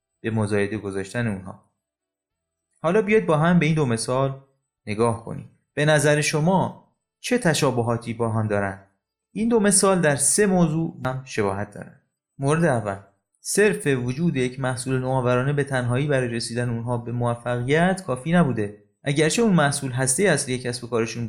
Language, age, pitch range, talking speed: Persian, 30-49, 115-160 Hz, 150 wpm